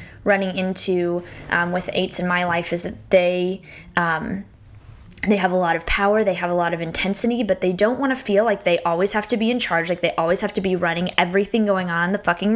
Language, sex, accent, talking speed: English, female, American, 245 wpm